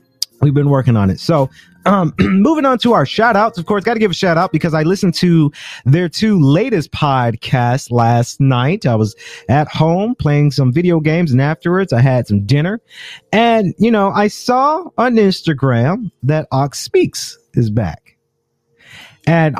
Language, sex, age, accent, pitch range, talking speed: English, male, 30-49, American, 125-170 Hz, 180 wpm